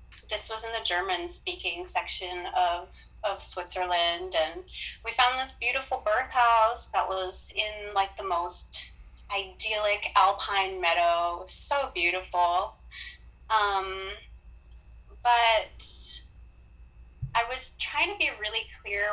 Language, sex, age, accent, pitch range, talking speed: English, female, 20-39, American, 175-225 Hz, 115 wpm